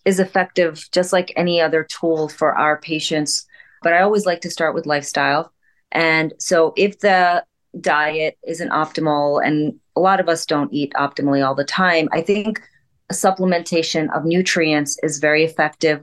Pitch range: 150-175 Hz